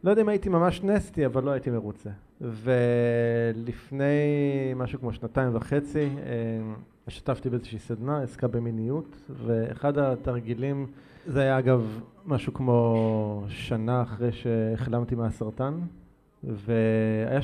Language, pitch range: Hebrew, 120-145 Hz